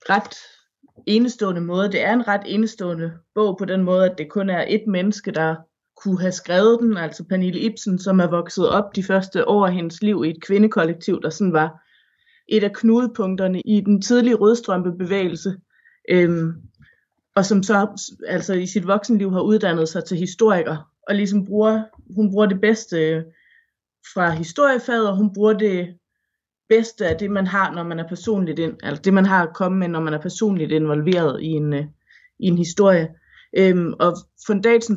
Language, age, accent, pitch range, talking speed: Danish, 30-49, native, 175-215 Hz, 180 wpm